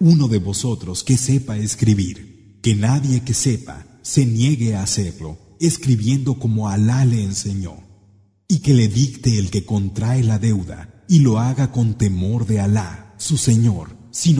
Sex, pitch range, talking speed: male, 100-130 Hz, 160 wpm